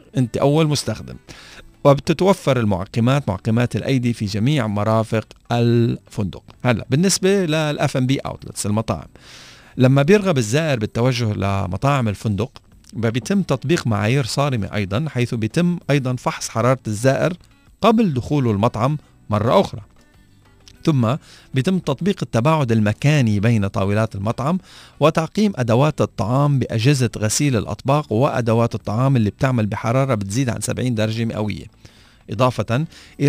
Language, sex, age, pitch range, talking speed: Arabic, male, 40-59, 110-140 Hz, 115 wpm